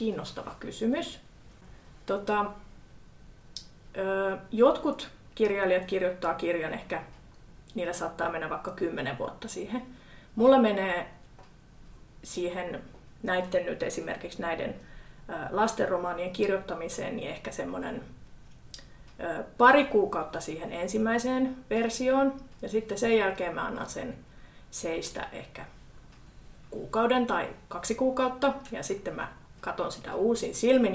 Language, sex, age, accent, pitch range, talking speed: Finnish, female, 30-49, native, 185-255 Hz, 100 wpm